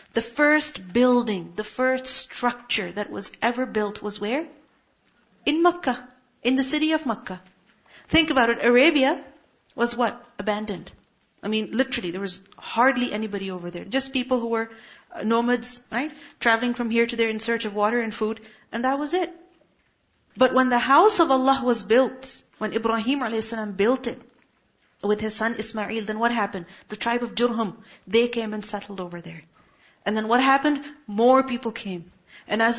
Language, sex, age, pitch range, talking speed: English, female, 40-59, 215-265 Hz, 170 wpm